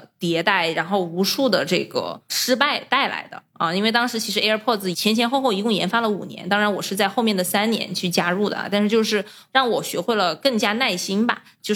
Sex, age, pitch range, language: female, 20-39, 180-215 Hz, Chinese